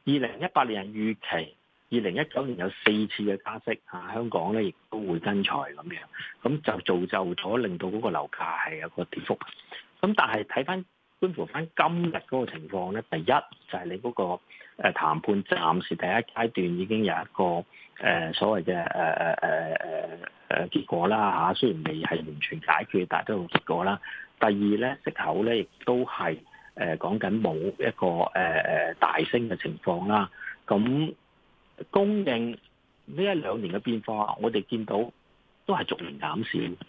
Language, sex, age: Chinese, male, 40-59